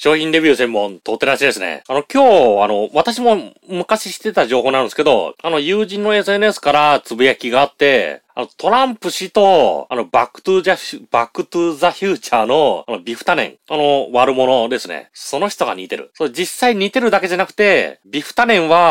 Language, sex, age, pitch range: Japanese, male, 30-49, 150-250 Hz